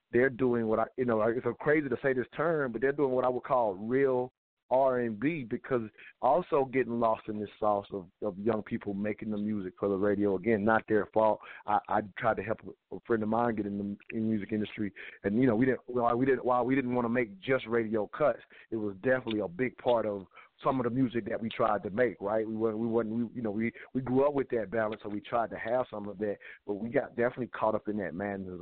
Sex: male